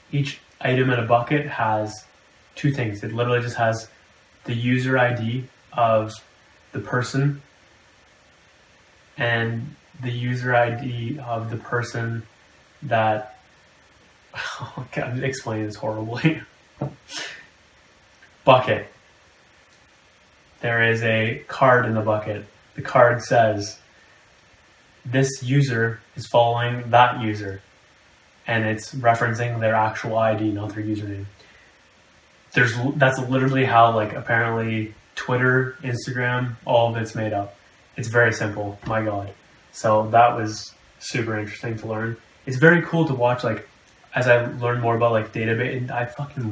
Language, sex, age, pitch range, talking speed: English, male, 10-29, 105-125 Hz, 125 wpm